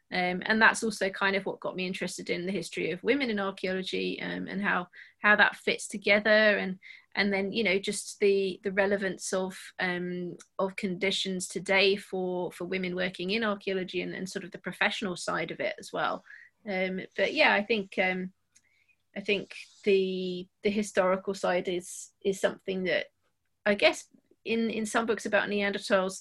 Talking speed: 180 wpm